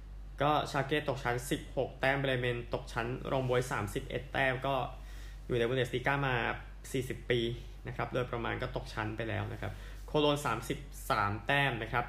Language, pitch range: Thai, 115-135 Hz